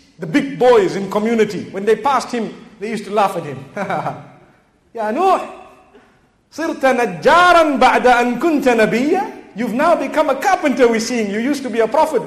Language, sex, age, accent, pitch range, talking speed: English, male, 50-69, South African, 210-265 Hz, 135 wpm